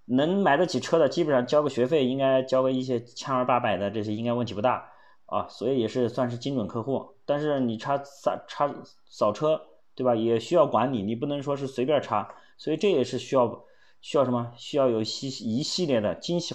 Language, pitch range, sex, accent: Chinese, 110-130 Hz, male, native